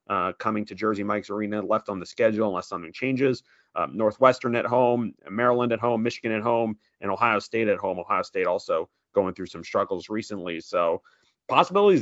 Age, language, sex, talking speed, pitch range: 30-49, English, male, 190 wpm, 110-130 Hz